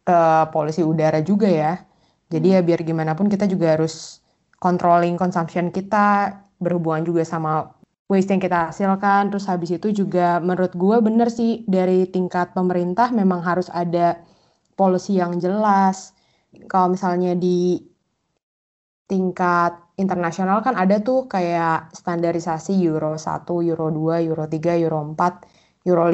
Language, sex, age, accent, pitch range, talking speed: Indonesian, female, 20-39, native, 165-190 Hz, 135 wpm